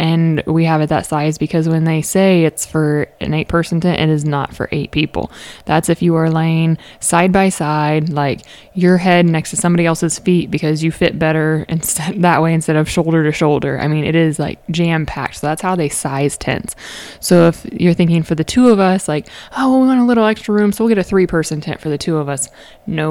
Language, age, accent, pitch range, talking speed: English, 20-39, American, 155-175 Hz, 240 wpm